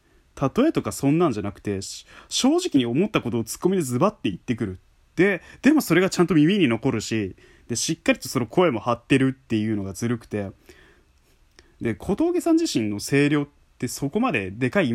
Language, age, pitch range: Japanese, 20-39, 100-145 Hz